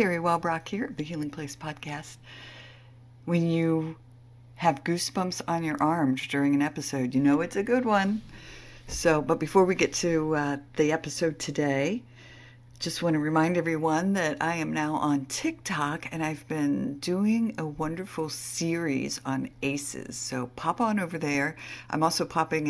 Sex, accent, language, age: female, American, English, 60-79